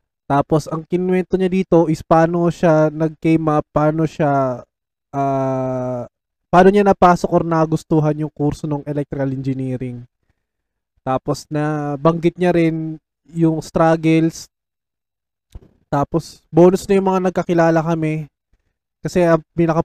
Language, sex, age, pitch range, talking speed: Filipino, male, 20-39, 145-170 Hz, 120 wpm